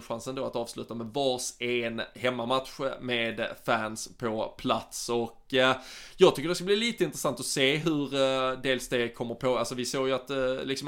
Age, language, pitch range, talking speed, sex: 20-39, Swedish, 120-135 Hz, 180 wpm, male